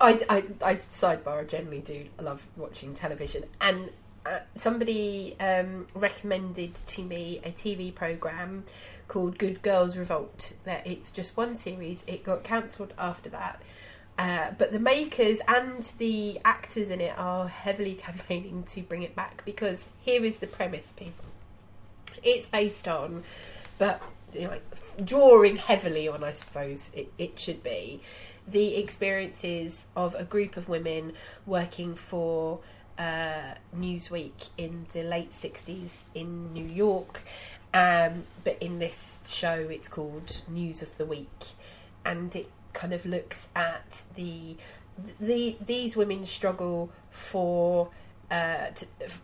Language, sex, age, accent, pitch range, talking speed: English, female, 30-49, British, 165-200 Hz, 140 wpm